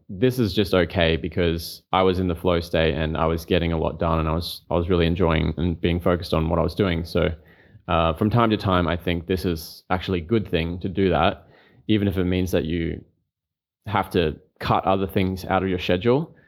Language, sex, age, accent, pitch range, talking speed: English, male, 20-39, Australian, 85-100 Hz, 235 wpm